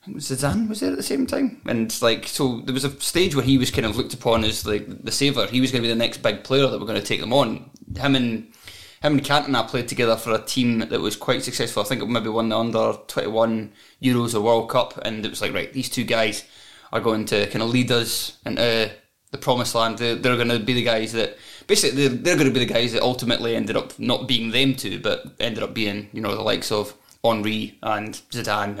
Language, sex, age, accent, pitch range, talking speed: English, male, 20-39, British, 110-130 Hz, 260 wpm